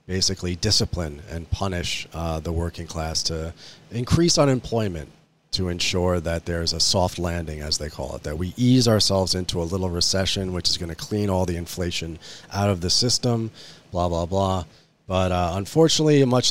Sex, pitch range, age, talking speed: male, 85-105 Hz, 30-49, 180 wpm